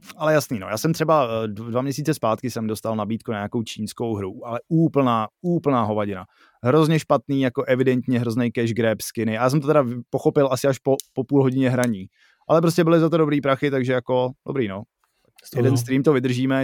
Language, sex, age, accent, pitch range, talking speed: Czech, male, 20-39, native, 110-140 Hz, 200 wpm